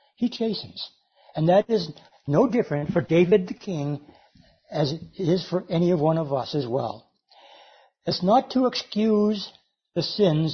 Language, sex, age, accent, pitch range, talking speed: English, male, 60-79, American, 145-195 Hz, 155 wpm